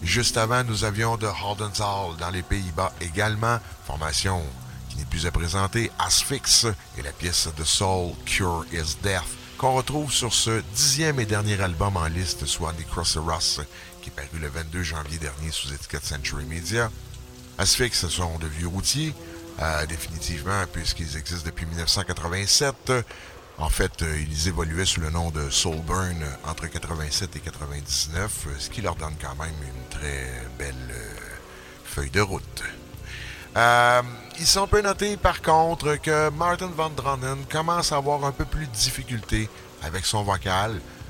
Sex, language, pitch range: male, English, 80-110 Hz